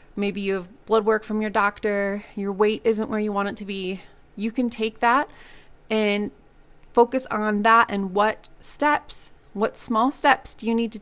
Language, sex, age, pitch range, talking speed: English, female, 30-49, 195-230 Hz, 190 wpm